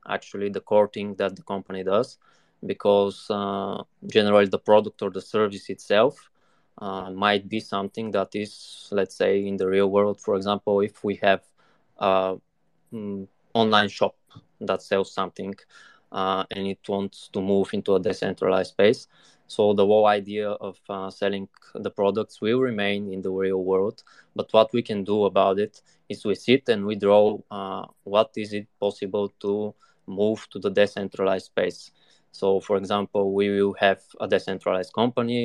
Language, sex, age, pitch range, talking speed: English, male, 20-39, 95-105 Hz, 165 wpm